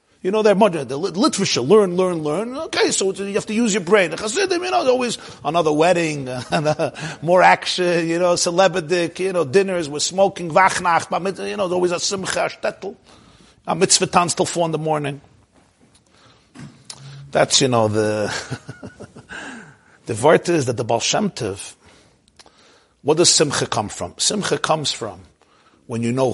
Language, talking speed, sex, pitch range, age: English, 160 wpm, male, 120-185 Hz, 50-69